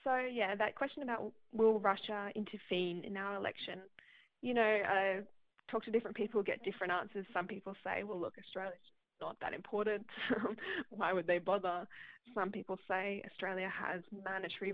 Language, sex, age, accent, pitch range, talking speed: English, female, 20-39, Australian, 185-225 Hz, 165 wpm